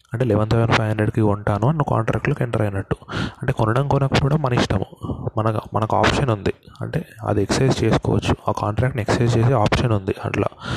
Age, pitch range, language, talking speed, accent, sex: 20-39, 105-120 Hz, Telugu, 165 wpm, native, male